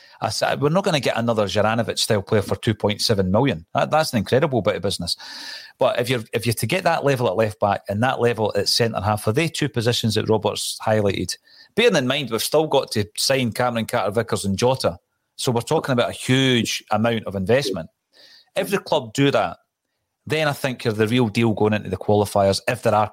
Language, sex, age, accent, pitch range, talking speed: English, male, 40-59, British, 105-130 Hz, 215 wpm